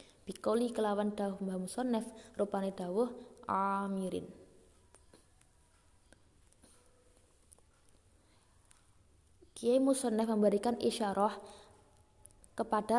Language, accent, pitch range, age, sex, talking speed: Indonesian, native, 185-235 Hz, 20-39, female, 50 wpm